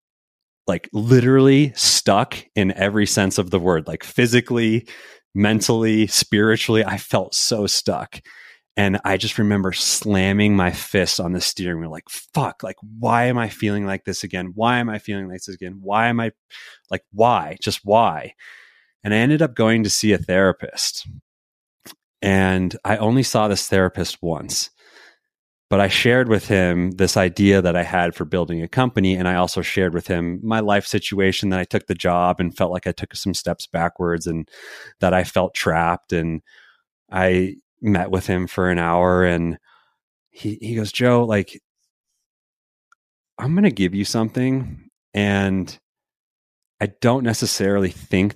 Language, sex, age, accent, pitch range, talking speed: English, male, 30-49, American, 90-110 Hz, 165 wpm